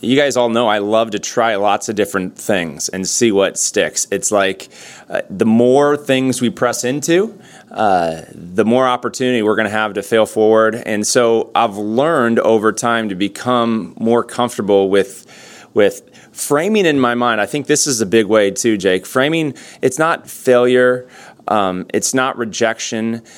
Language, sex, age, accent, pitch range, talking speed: English, male, 30-49, American, 110-130 Hz, 175 wpm